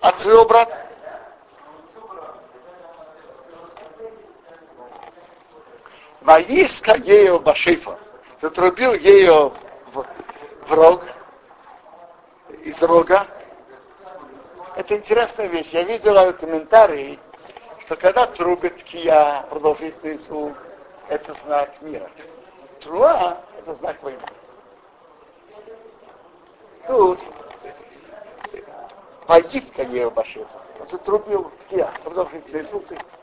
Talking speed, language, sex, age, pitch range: 60 wpm, Russian, male, 60-79, 160-230 Hz